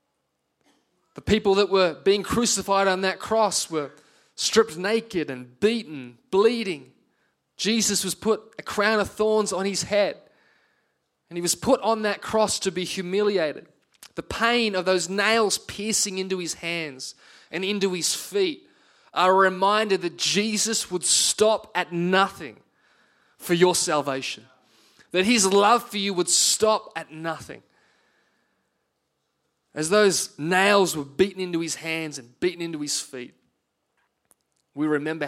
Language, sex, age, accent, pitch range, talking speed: English, male, 20-39, Australian, 150-195 Hz, 145 wpm